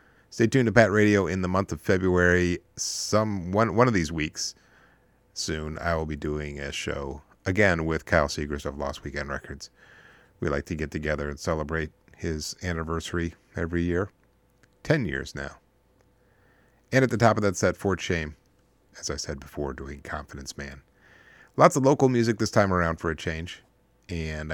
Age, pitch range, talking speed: 50-69, 75-95 Hz, 175 wpm